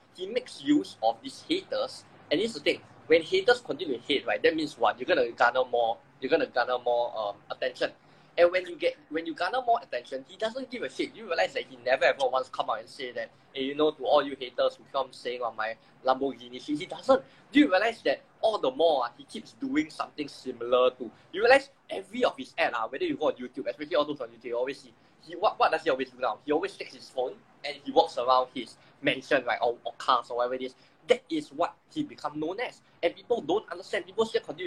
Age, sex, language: 10-29, male, English